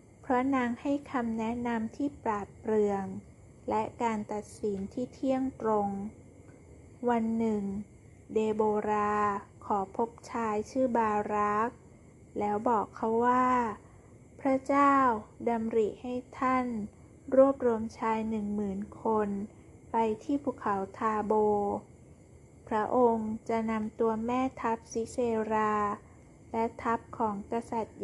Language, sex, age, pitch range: Thai, female, 20-39, 215-245 Hz